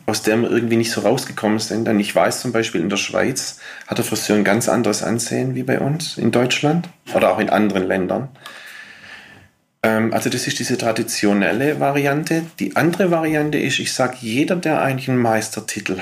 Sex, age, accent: male, 40-59, German